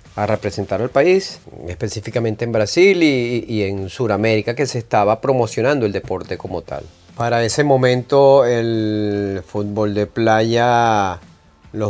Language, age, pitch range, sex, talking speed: English, 30-49, 105-125 Hz, male, 135 wpm